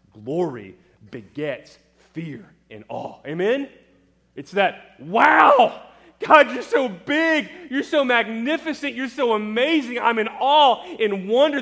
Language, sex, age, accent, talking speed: English, male, 30-49, American, 125 wpm